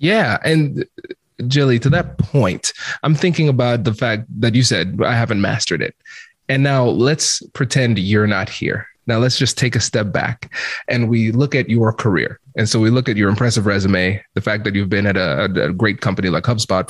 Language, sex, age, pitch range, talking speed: English, male, 20-39, 110-140 Hz, 210 wpm